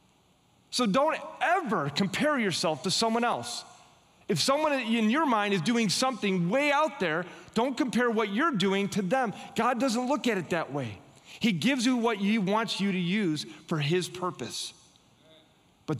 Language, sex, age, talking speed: English, male, 30-49, 175 wpm